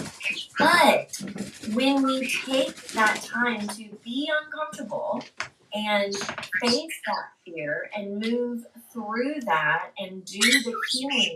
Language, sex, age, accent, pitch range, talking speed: English, female, 30-49, American, 195-275 Hz, 110 wpm